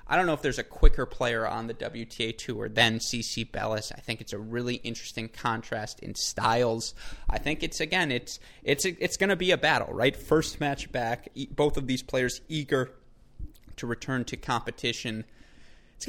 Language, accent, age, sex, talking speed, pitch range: English, American, 20-39, male, 185 wpm, 115-130 Hz